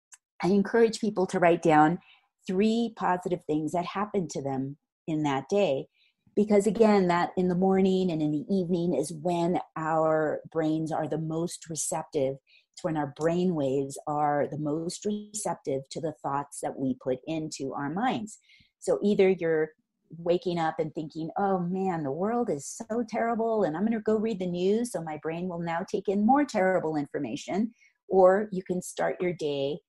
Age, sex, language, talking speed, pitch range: 30-49, female, English, 180 wpm, 155-200 Hz